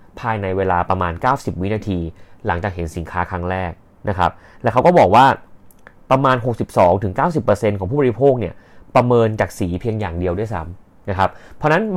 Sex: male